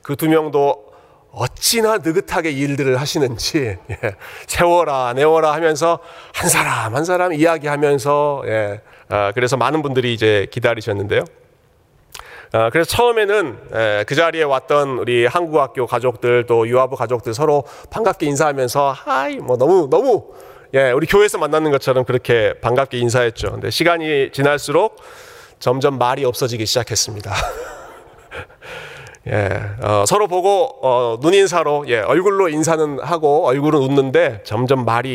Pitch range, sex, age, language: 120-165 Hz, male, 40-59, Korean